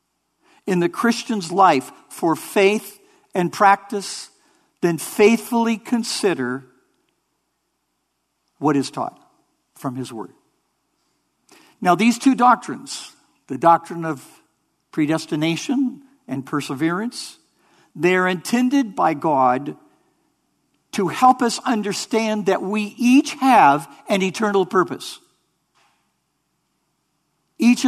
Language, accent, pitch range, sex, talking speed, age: English, American, 160-235 Hz, male, 95 wpm, 60-79